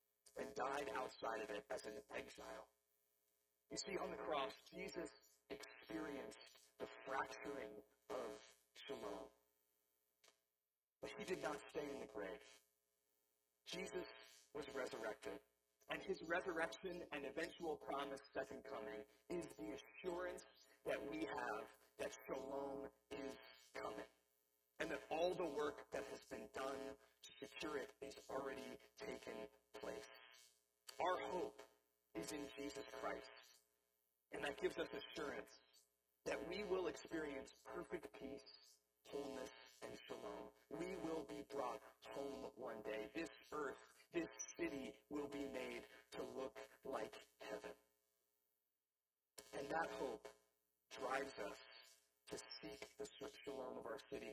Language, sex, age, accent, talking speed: English, male, 40-59, American, 125 wpm